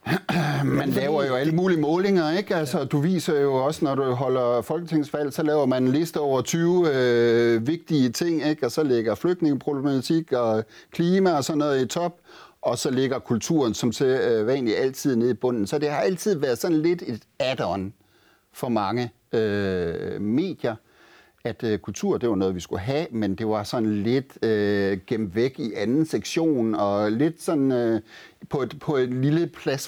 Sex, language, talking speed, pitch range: male, Danish, 185 wpm, 120-170 Hz